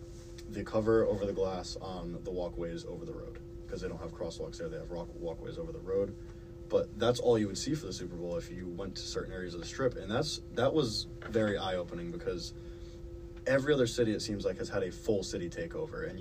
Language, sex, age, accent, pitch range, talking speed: English, male, 20-39, American, 90-115 Hz, 235 wpm